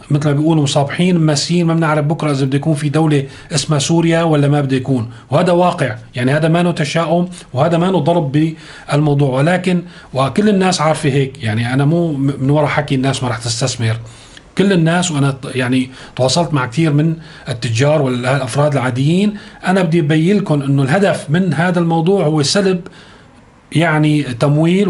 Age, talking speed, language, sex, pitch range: 40-59, 165 wpm, Arabic, male, 140-170 Hz